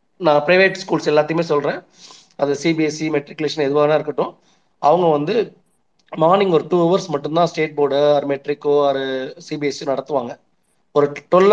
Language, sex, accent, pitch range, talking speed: Tamil, male, native, 150-190 Hz, 135 wpm